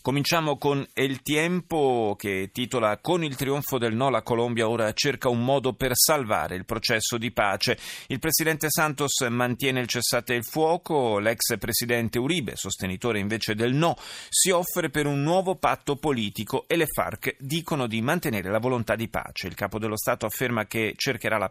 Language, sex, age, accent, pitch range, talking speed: Italian, male, 30-49, native, 110-140 Hz, 175 wpm